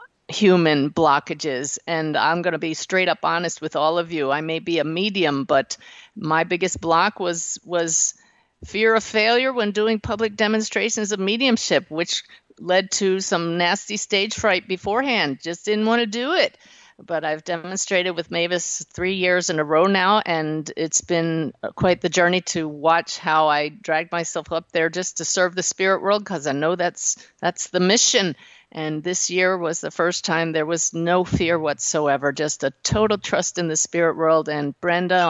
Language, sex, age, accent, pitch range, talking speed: English, female, 50-69, American, 155-190 Hz, 185 wpm